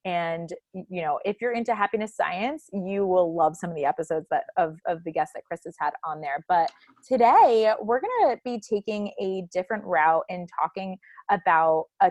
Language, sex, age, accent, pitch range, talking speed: English, female, 20-39, American, 185-240 Hz, 195 wpm